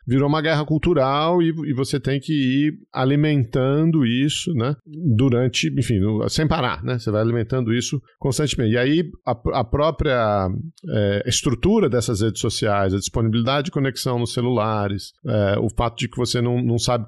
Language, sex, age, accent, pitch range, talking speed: Portuguese, male, 40-59, Brazilian, 115-150 Hz, 160 wpm